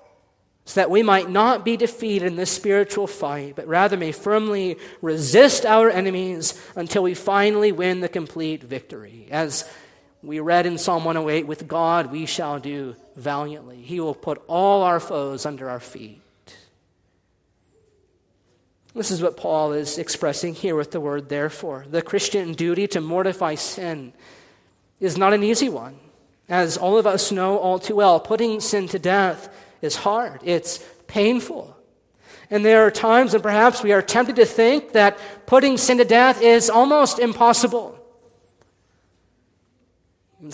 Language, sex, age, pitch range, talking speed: English, male, 40-59, 150-205 Hz, 150 wpm